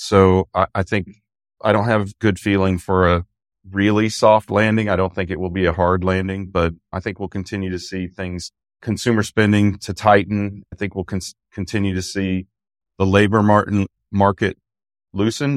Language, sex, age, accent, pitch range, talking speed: English, male, 30-49, American, 90-100 Hz, 180 wpm